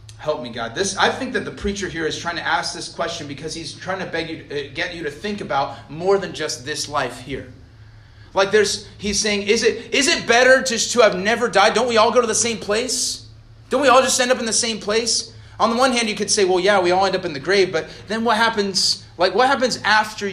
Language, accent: English, American